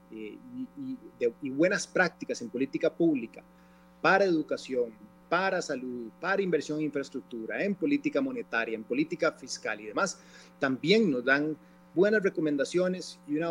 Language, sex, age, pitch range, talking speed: Spanish, male, 30-49, 120-175 Hz, 140 wpm